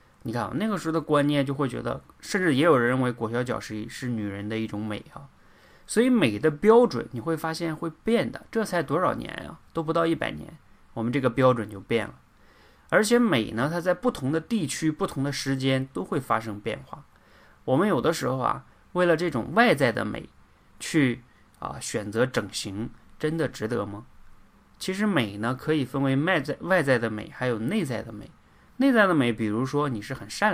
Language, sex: Chinese, male